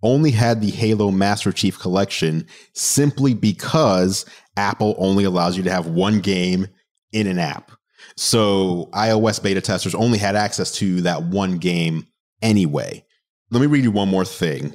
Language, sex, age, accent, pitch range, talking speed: English, male, 30-49, American, 95-120 Hz, 160 wpm